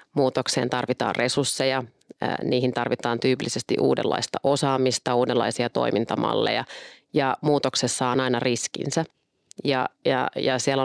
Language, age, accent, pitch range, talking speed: Finnish, 30-49, native, 125-145 Hz, 105 wpm